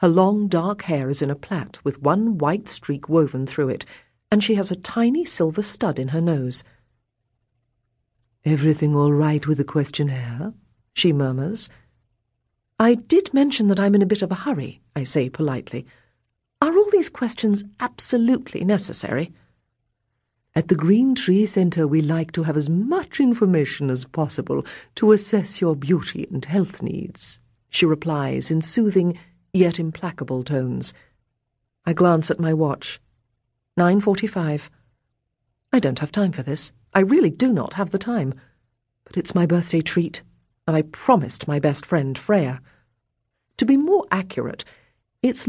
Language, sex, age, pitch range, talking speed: English, female, 50-69, 130-195 Hz, 155 wpm